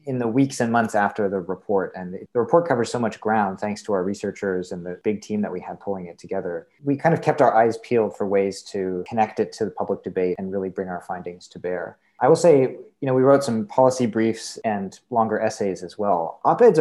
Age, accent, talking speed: 30-49, American, 245 wpm